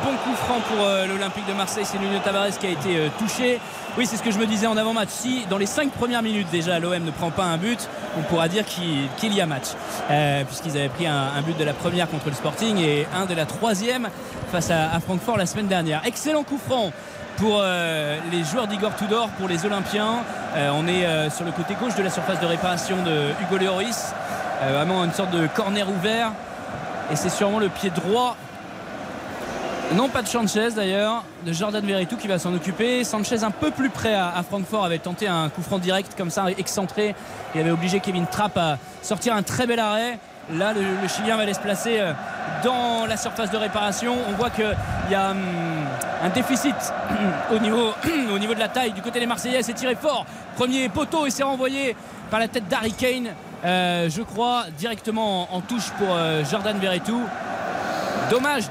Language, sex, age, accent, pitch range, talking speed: French, male, 20-39, French, 180-235 Hz, 205 wpm